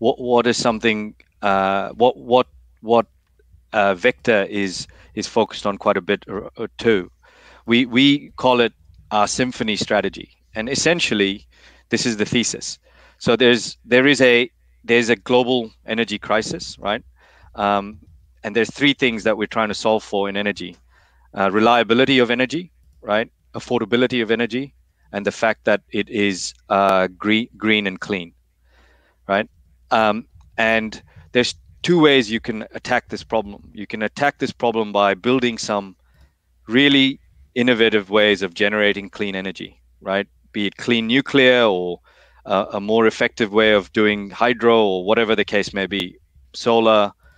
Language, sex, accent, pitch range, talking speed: English, male, Malaysian, 95-120 Hz, 155 wpm